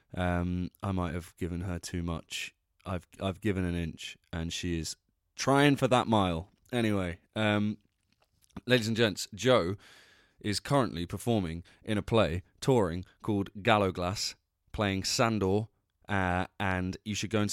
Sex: male